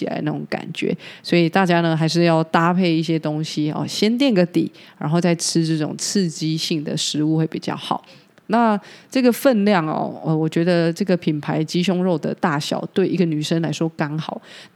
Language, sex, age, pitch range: Chinese, female, 20-39, 165-200 Hz